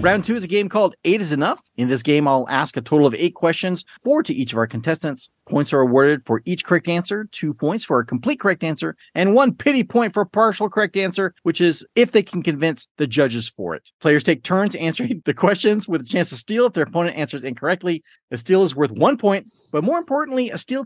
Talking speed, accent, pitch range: 245 wpm, American, 150-215 Hz